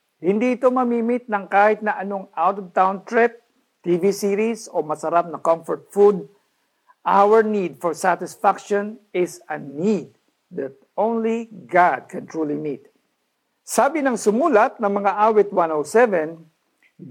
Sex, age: male, 50-69